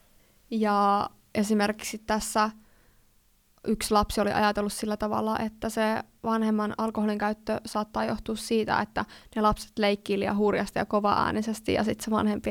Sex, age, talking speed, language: female, 20-39, 140 wpm, Finnish